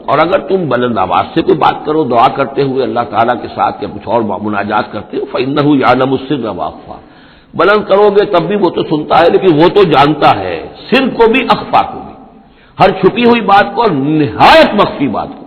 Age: 60-79